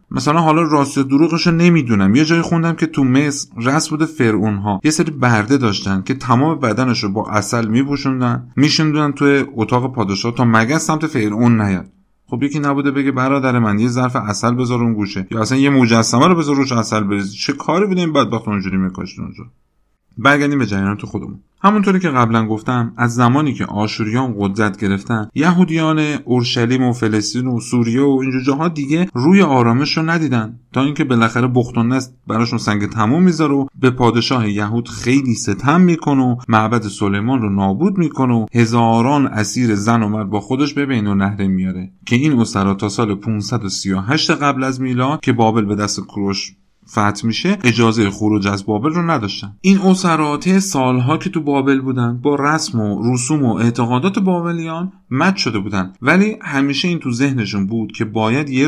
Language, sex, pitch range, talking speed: Persian, male, 105-145 Hz, 175 wpm